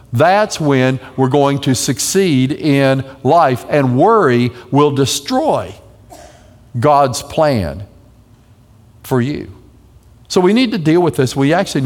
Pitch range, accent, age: 120-160 Hz, American, 50-69